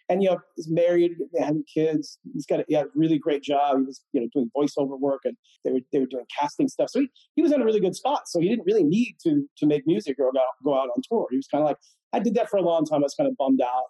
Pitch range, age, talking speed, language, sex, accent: 140-185 Hz, 40-59, 315 wpm, English, male, American